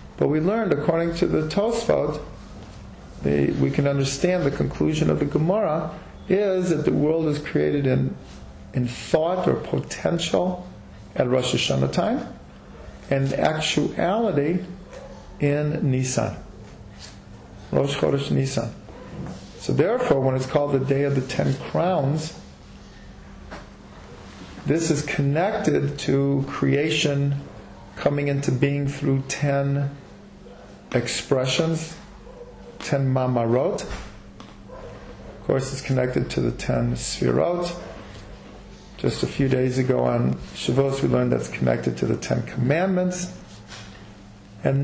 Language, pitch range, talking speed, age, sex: English, 120-165 Hz, 115 wpm, 40-59, male